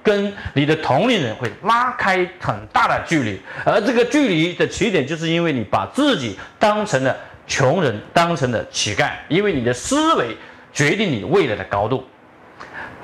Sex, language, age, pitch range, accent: male, Chinese, 40-59, 180-275 Hz, native